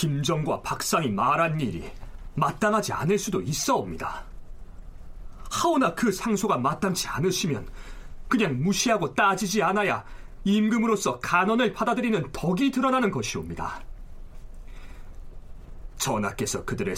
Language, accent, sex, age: Korean, native, male, 40-59